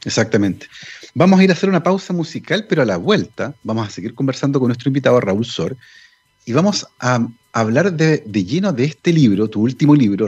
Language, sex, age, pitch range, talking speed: Spanish, male, 40-59, 125-175 Hz, 205 wpm